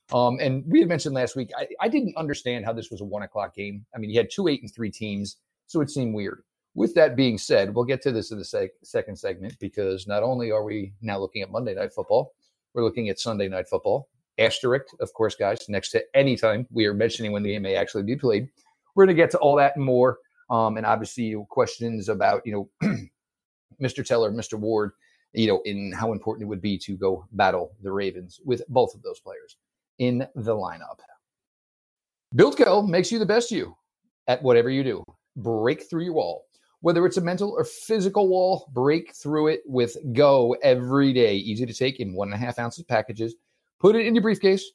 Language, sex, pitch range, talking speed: English, male, 110-165 Hz, 220 wpm